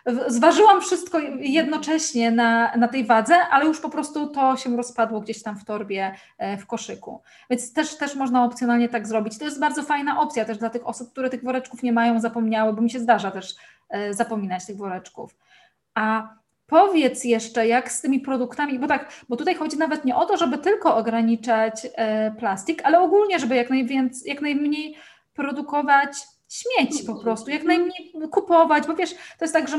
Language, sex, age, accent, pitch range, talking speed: Polish, female, 20-39, native, 235-295 Hz, 180 wpm